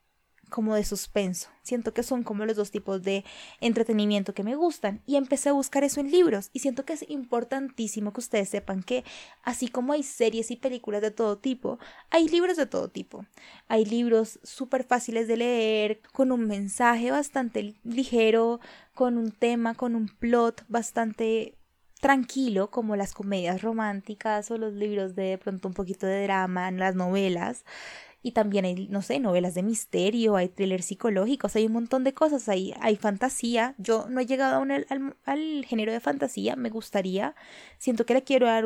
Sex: female